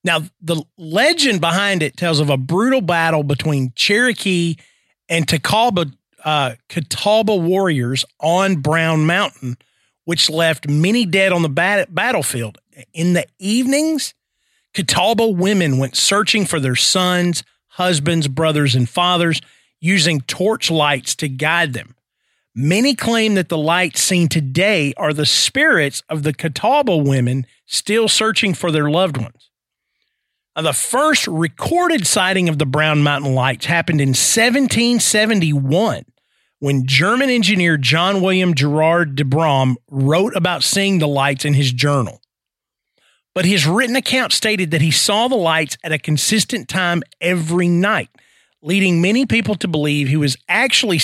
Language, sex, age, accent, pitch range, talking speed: English, male, 40-59, American, 145-200 Hz, 140 wpm